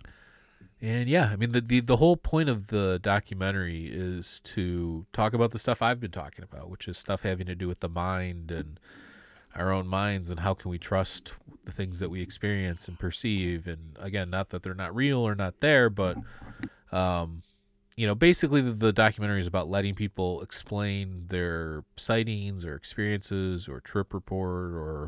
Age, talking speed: 30-49, 185 wpm